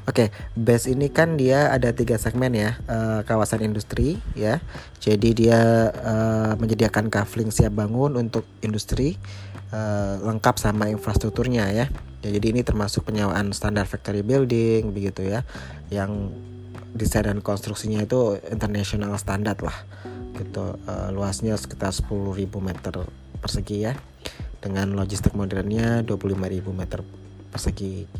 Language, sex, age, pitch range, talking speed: Indonesian, male, 20-39, 100-115 Hz, 130 wpm